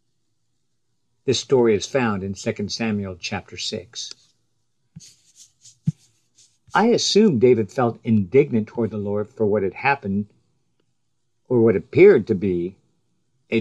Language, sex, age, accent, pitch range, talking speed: English, male, 50-69, American, 110-130 Hz, 120 wpm